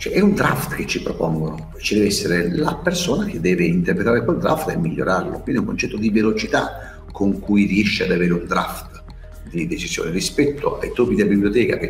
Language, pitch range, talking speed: Italian, 90-145 Hz, 200 wpm